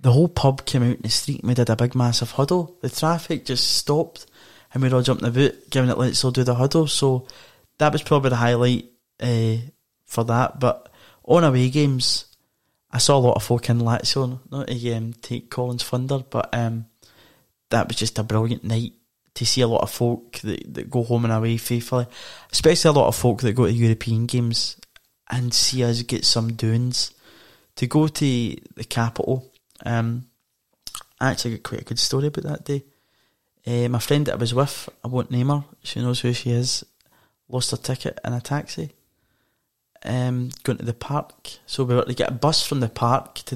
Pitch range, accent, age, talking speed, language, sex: 120-135 Hz, British, 20-39, 210 wpm, English, male